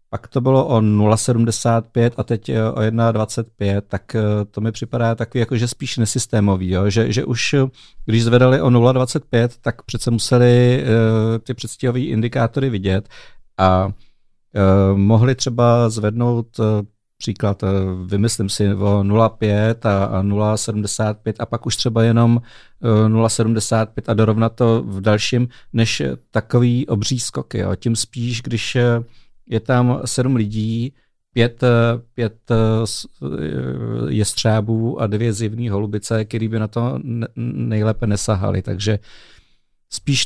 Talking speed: 135 wpm